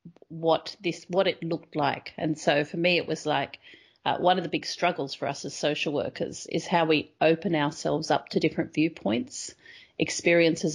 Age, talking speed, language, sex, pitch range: 40-59, 190 wpm, English, female, 155-180 Hz